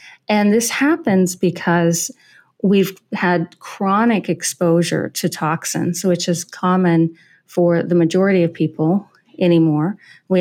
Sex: female